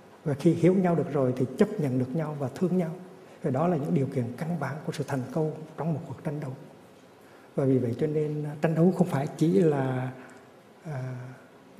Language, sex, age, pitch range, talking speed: Vietnamese, male, 60-79, 140-180 Hz, 220 wpm